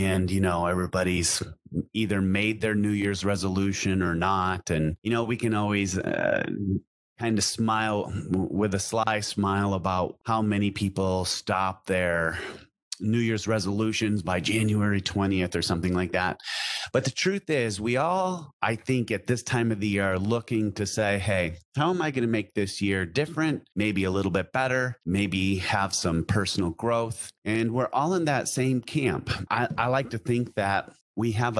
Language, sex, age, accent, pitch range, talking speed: English, male, 30-49, American, 95-115 Hz, 180 wpm